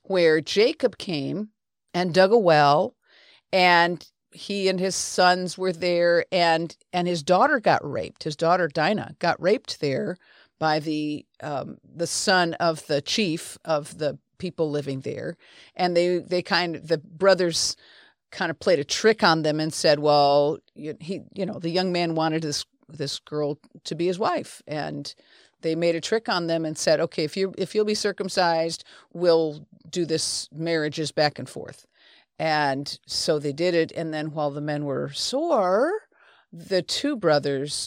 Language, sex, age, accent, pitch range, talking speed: English, female, 50-69, American, 155-185 Hz, 170 wpm